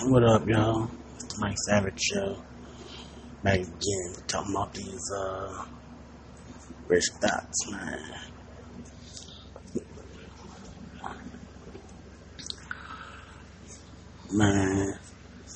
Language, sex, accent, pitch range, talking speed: English, male, American, 80-105 Hz, 60 wpm